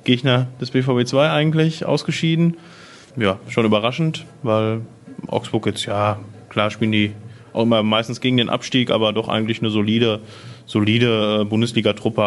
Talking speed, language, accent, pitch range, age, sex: 140 wpm, German, German, 105-125 Hz, 20-39, male